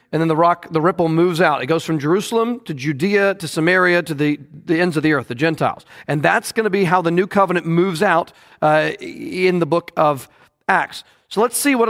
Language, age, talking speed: English, 40-59, 225 wpm